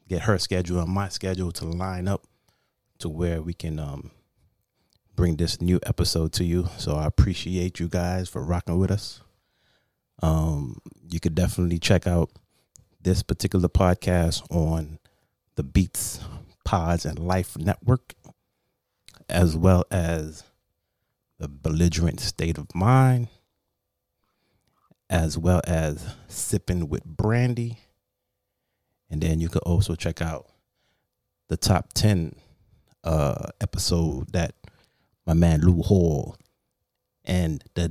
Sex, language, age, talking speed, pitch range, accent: male, English, 30-49, 125 wpm, 80-100 Hz, American